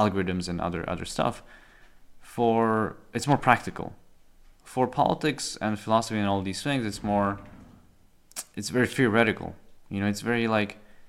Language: English